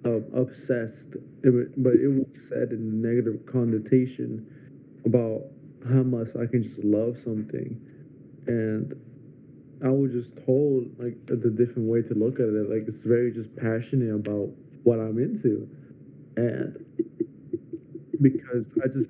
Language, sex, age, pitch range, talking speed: English, male, 20-39, 115-135 Hz, 145 wpm